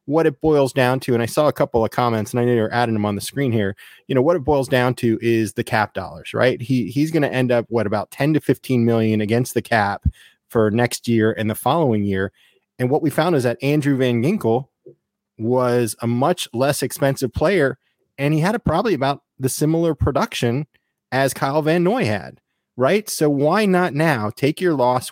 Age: 30-49